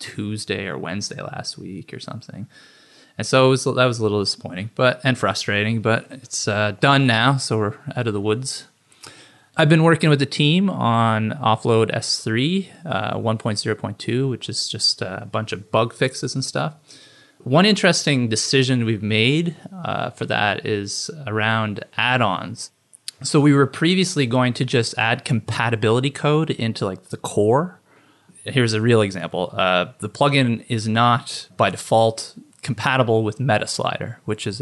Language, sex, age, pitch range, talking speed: English, male, 20-39, 110-135 Hz, 170 wpm